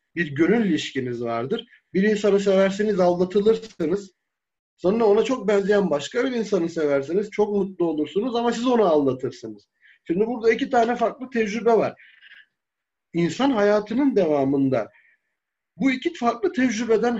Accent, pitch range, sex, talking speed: native, 135-215 Hz, male, 130 wpm